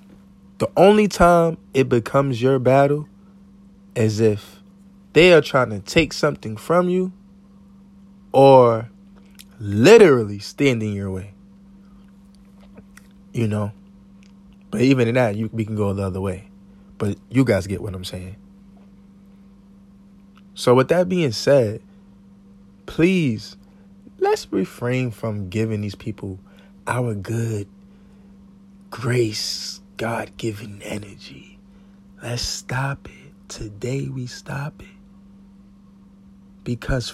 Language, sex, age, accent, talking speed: English, male, 20-39, American, 105 wpm